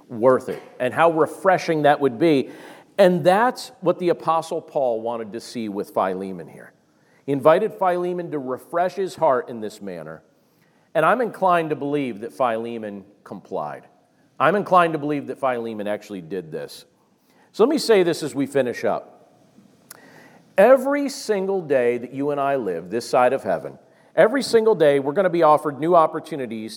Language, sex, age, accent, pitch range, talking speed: English, male, 40-59, American, 125-175 Hz, 175 wpm